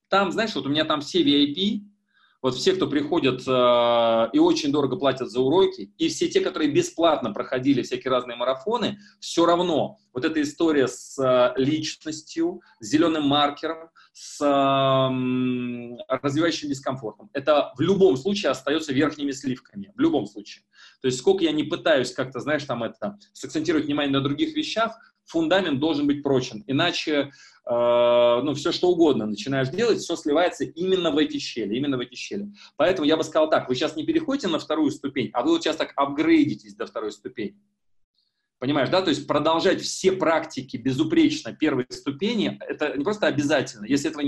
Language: Russian